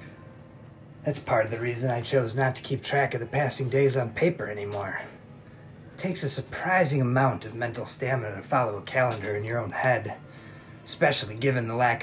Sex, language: male, English